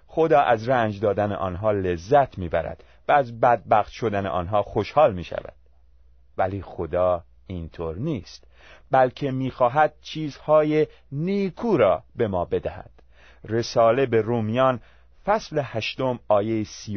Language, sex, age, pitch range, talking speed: Persian, male, 30-49, 80-125 Hz, 125 wpm